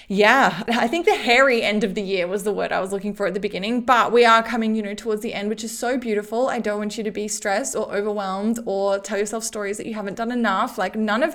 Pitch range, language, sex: 200-235 Hz, English, female